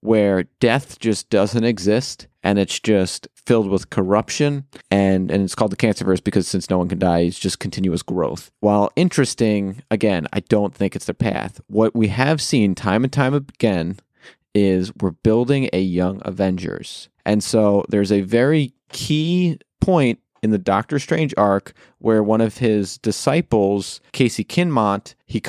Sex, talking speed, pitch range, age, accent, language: male, 165 wpm, 100-120 Hz, 30-49, American, English